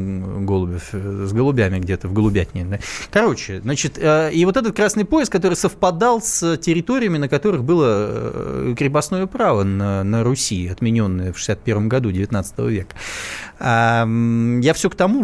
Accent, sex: native, male